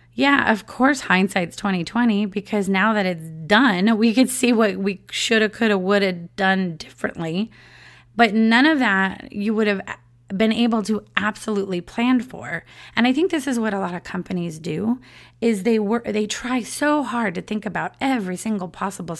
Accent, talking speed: American, 180 wpm